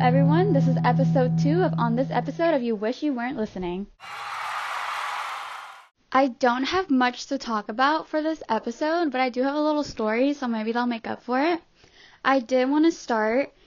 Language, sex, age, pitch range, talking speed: English, female, 10-29, 210-260 Hz, 195 wpm